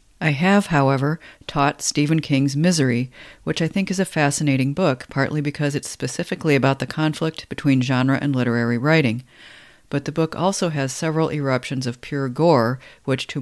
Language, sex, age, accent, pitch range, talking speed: English, female, 50-69, American, 130-155 Hz, 170 wpm